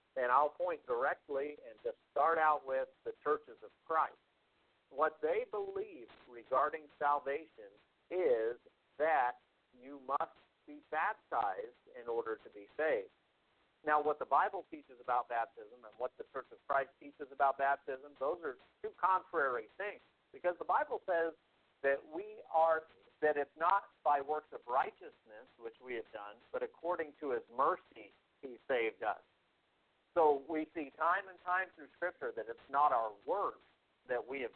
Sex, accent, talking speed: male, American, 160 wpm